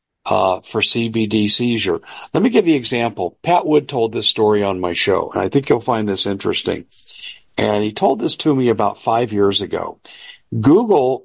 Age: 50-69